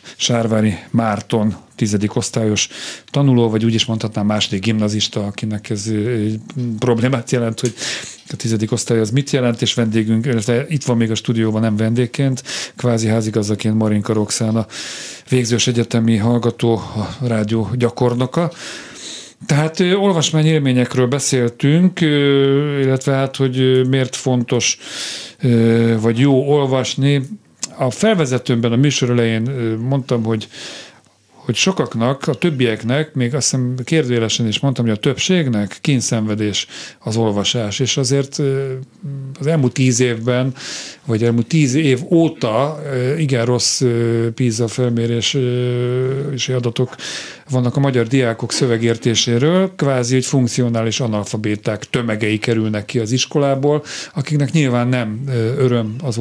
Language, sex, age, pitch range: Hungarian, male, 40-59, 115-135 Hz